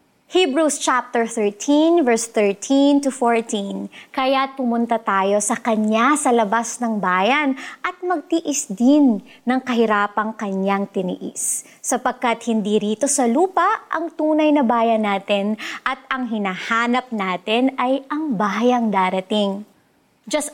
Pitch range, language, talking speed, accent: 220-280 Hz, Filipino, 125 wpm, native